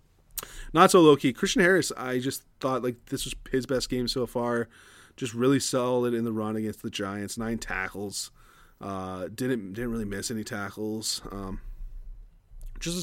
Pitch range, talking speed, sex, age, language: 105-140 Hz, 175 wpm, male, 20-39, English